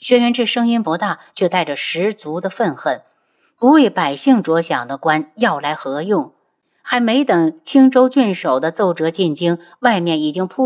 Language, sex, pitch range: Chinese, female, 170-255 Hz